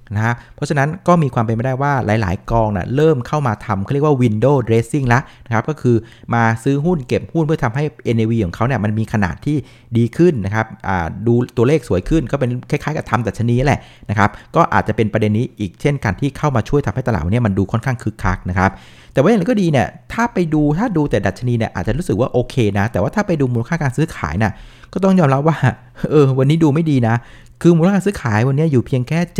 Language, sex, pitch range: Thai, male, 110-145 Hz